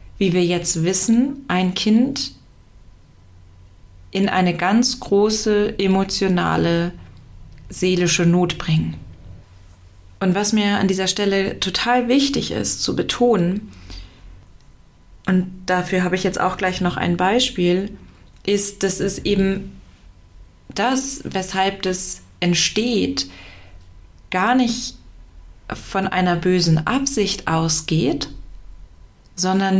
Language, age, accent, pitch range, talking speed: German, 30-49, German, 140-205 Hz, 105 wpm